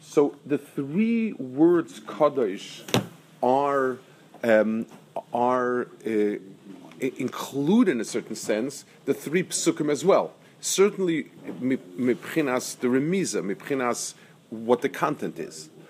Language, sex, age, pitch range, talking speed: English, male, 40-59, 125-190 Hz, 100 wpm